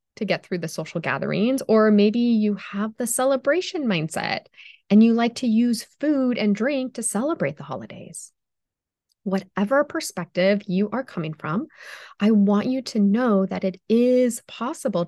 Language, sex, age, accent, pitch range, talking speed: English, female, 20-39, American, 180-235 Hz, 160 wpm